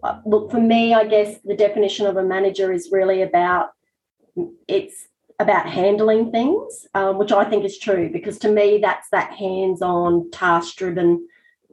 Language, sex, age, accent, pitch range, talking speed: English, female, 30-49, Australian, 195-230 Hz, 155 wpm